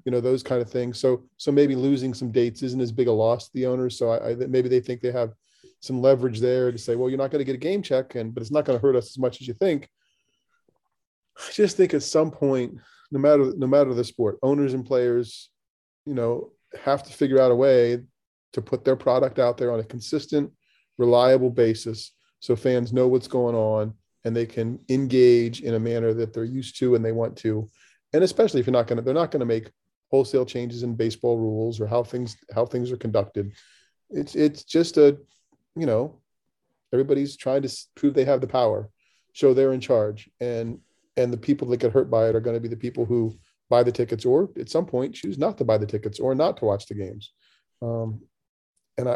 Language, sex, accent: English, male, American